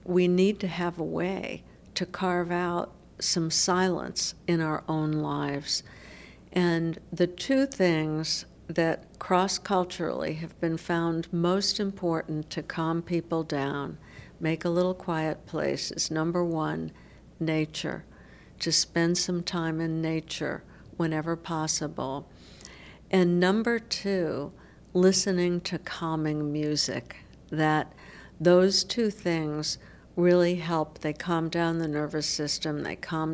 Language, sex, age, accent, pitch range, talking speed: English, female, 60-79, American, 155-180 Hz, 120 wpm